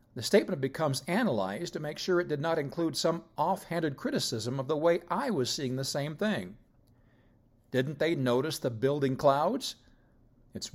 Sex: male